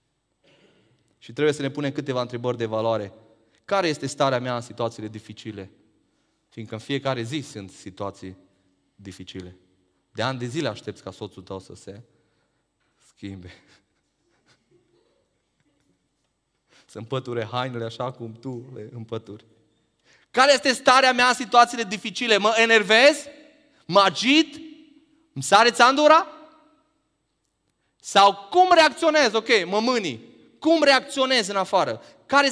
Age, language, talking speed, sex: 20-39, Romanian, 125 wpm, male